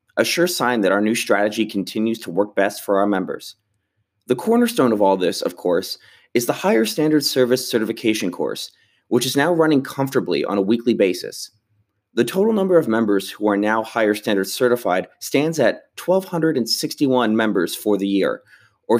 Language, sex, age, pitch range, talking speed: English, male, 30-49, 105-130 Hz, 175 wpm